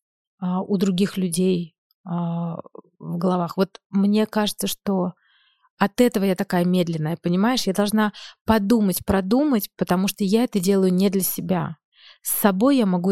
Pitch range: 185-225 Hz